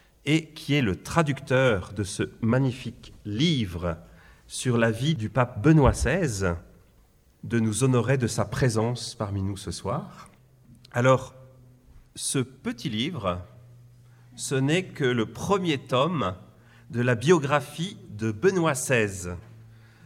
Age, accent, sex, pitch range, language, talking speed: 40-59, French, male, 110-140 Hz, French, 125 wpm